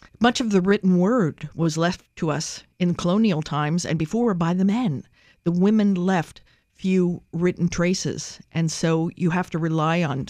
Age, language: 50-69, English